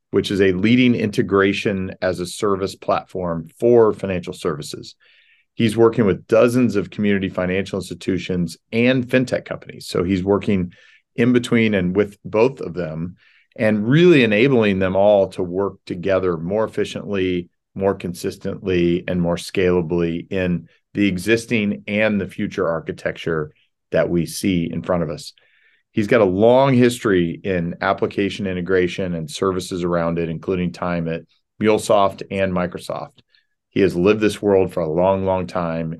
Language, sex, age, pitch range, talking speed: English, male, 40-59, 90-105 Hz, 150 wpm